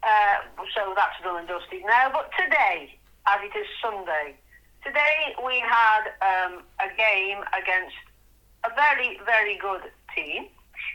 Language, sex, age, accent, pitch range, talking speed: English, female, 40-59, British, 175-230 Hz, 135 wpm